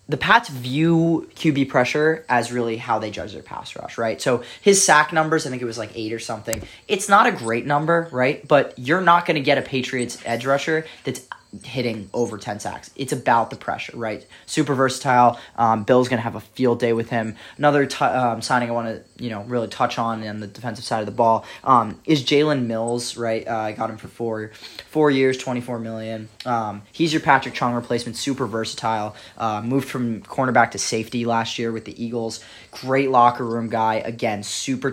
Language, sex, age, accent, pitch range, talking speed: English, male, 20-39, American, 110-140 Hz, 210 wpm